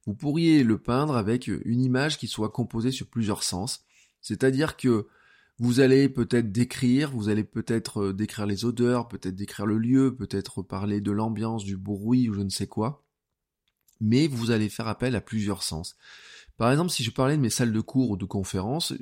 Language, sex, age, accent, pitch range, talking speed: French, male, 20-39, French, 95-120 Hz, 190 wpm